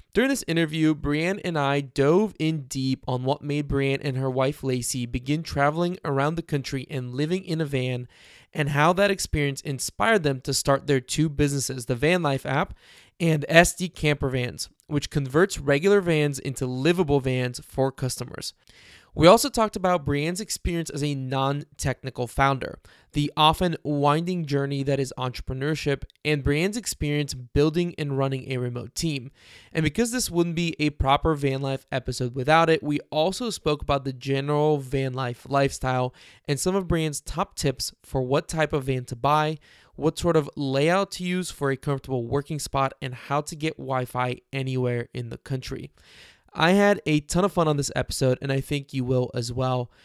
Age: 20-39